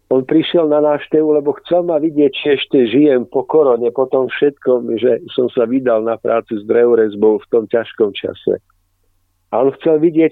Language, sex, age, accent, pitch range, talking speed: Czech, male, 50-69, native, 105-145 Hz, 180 wpm